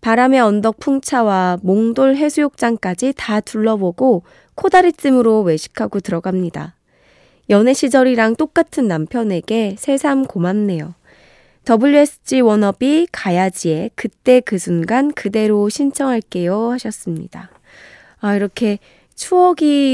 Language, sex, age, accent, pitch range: Korean, female, 20-39, native, 180-260 Hz